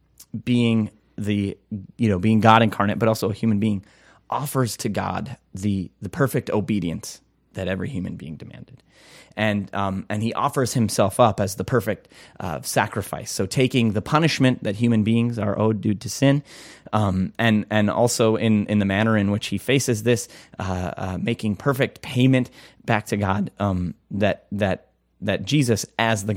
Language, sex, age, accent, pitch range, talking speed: English, male, 30-49, American, 100-120 Hz, 175 wpm